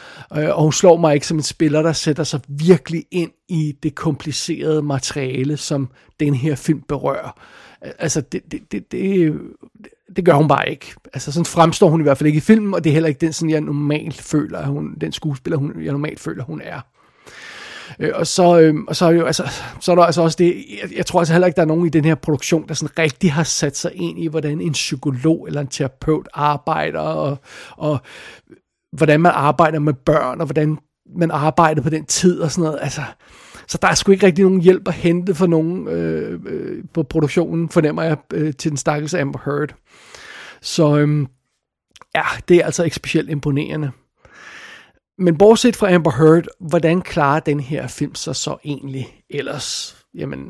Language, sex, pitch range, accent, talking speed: Danish, male, 145-170 Hz, native, 195 wpm